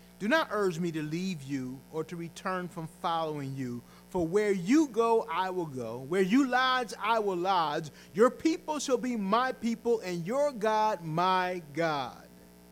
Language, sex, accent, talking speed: English, male, American, 175 wpm